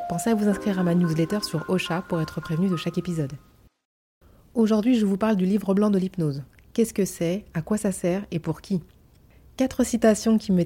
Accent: French